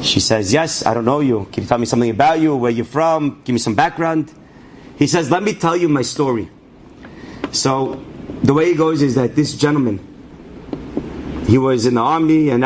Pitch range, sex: 135-190 Hz, male